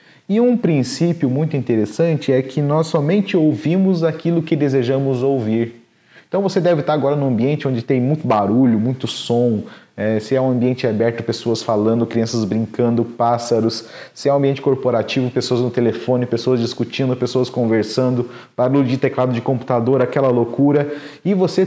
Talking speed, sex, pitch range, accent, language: 165 wpm, male, 120-155 Hz, Brazilian, Portuguese